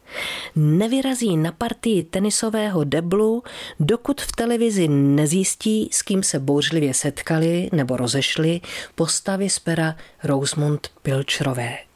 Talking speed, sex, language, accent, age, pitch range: 105 wpm, female, Czech, native, 40-59, 145-205 Hz